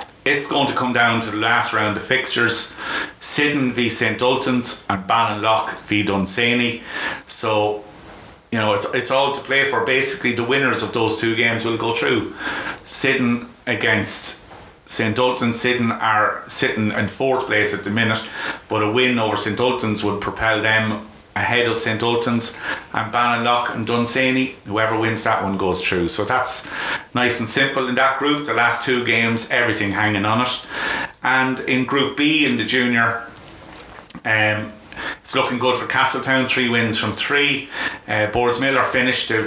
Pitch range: 105-125 Hz